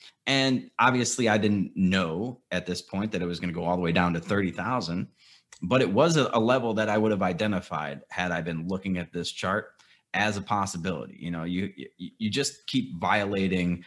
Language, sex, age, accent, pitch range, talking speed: English, male, 30-49, American, 90-110 Hz, 205 wpm